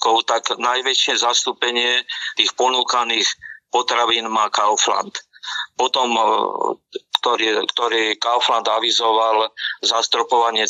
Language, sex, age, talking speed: Slovak, male, 50-69, 80 wpm